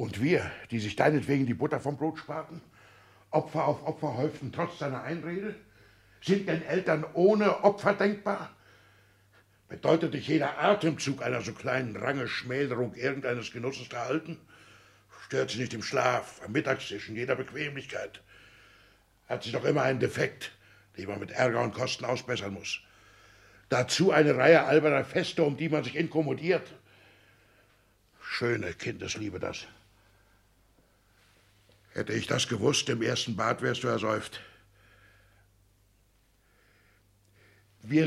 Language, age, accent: German, 60-79, German